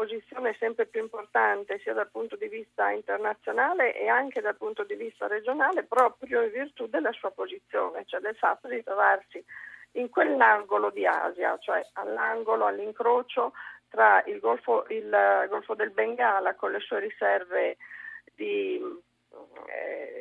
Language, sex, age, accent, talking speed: Italian, female, 40-59, native, 140 wpm